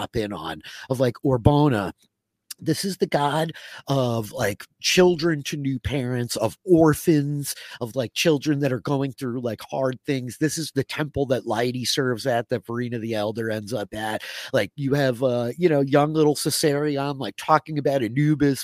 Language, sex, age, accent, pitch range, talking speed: English, male, 30-49, American, 115-155 Hz, 175 wpm